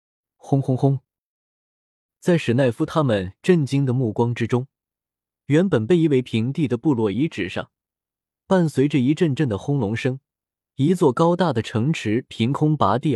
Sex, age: male, 20-39